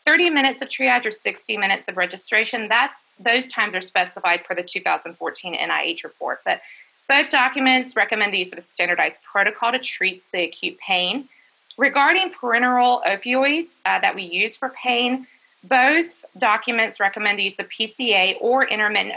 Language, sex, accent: English, female, American